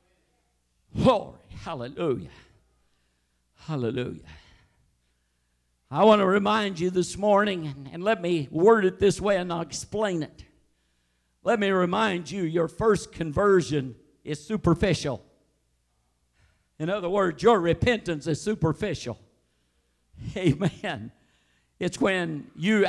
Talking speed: 105 wpm